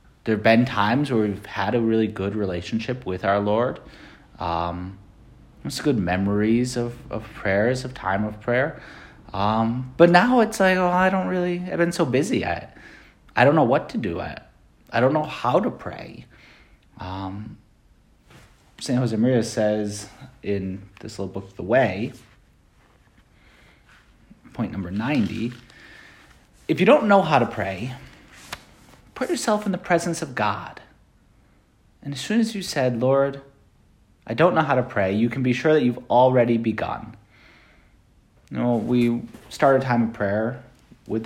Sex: male